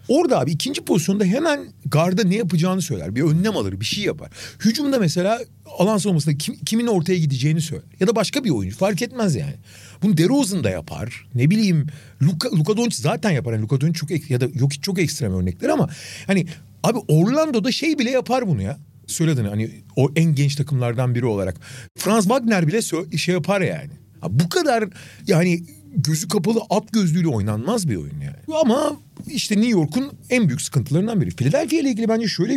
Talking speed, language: 190 wpm, Turkish